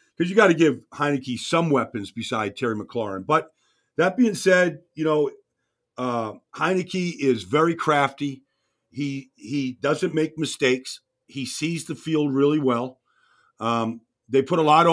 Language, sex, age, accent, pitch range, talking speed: English, male, 50-69, American, 125-155 Hz, 150 wpm